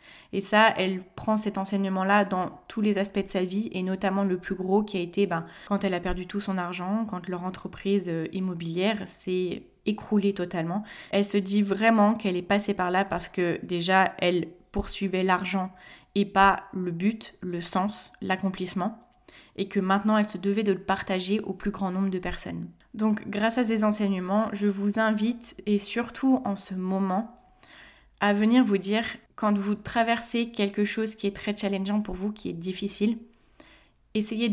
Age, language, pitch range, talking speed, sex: 20-39, French, 185-215 Hz, 180 wpm, female